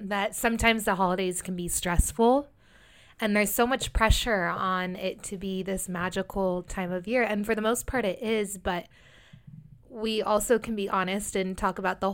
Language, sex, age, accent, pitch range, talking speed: English, female, 20-39, American, 180-215 Hz, 190 wpm